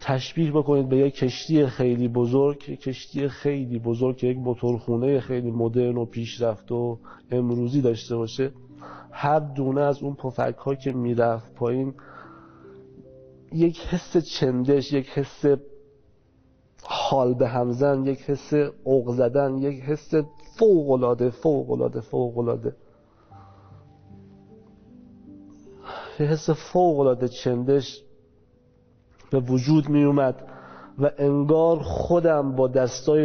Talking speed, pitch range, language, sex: 105 wpm, 125-145 Hz, Persian, male